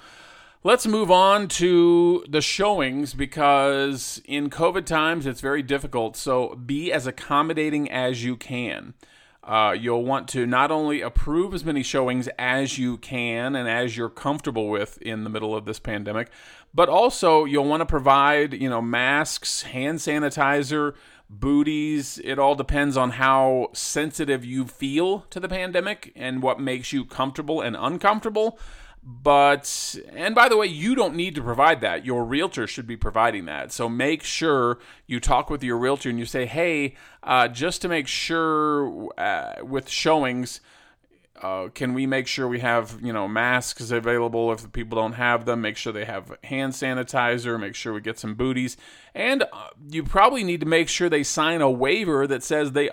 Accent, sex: American, male